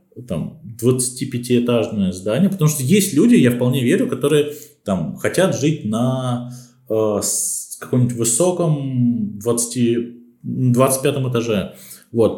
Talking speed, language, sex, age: 100 wpm, Russian, male, 20-39